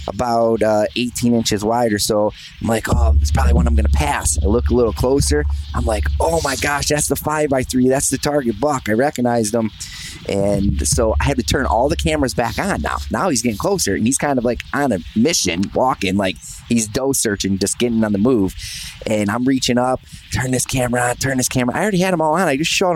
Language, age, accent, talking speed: English, 20-39, American, 235 wpm